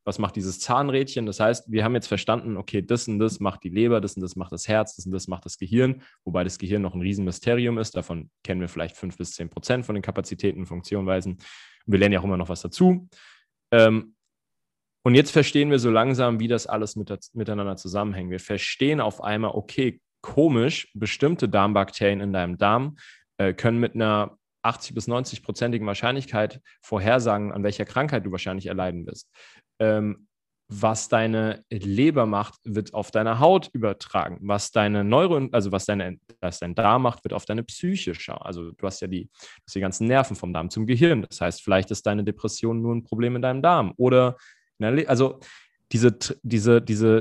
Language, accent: German, German